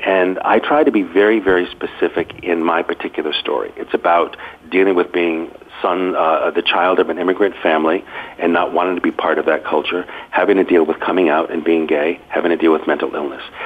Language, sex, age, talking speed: English, male, 50-69, 215 wpm